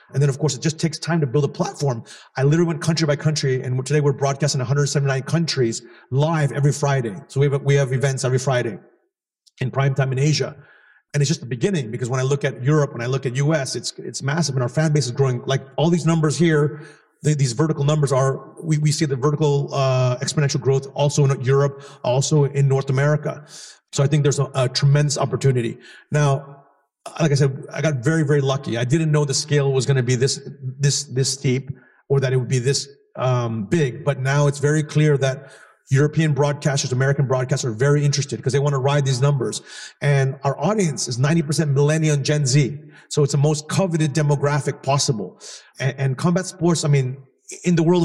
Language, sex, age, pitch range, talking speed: English, male, 40-59, 135-155 Hz, 215 wpm